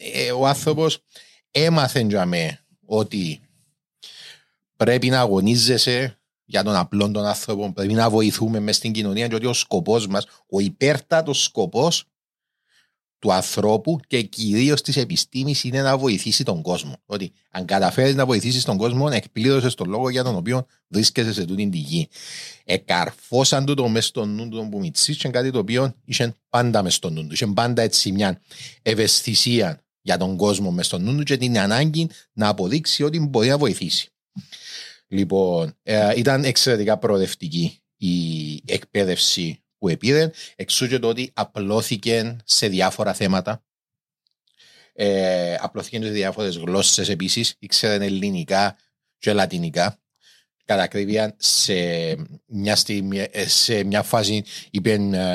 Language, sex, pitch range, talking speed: Greek, male, 100-130 Hz, 135 wpm